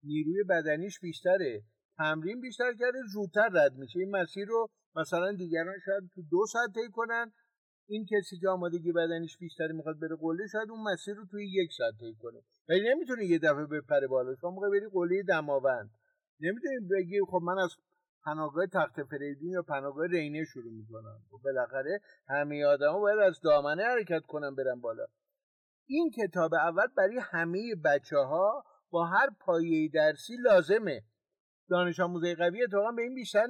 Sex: male